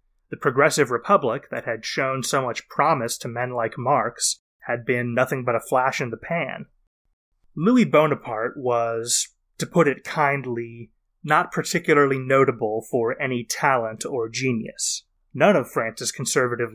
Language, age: English, 30-49